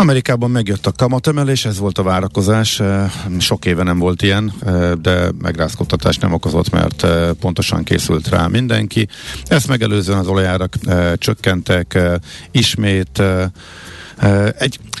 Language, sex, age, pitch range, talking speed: Hungarian, male, 50-69, 85-105 Hz, 115 wpm